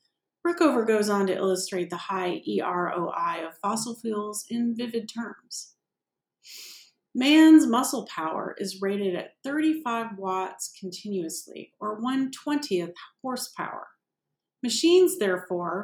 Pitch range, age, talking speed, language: 195-260 Hz, 30-49, 110 wpm, English